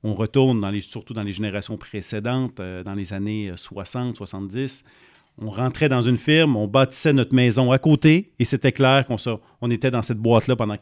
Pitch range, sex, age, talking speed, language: 110-140 Hz, male, 40-59, 200 wpm, French